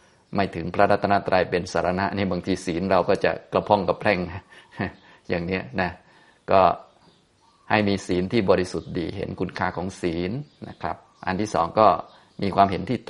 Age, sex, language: 20-39, male, Thai